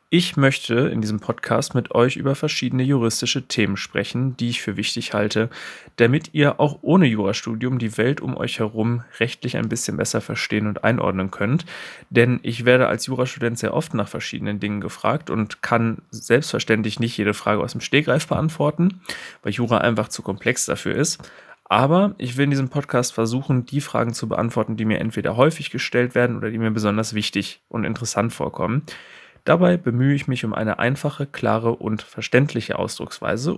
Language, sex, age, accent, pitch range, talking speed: German, male, 30-49, German, 110-130 Hz, 175 wpm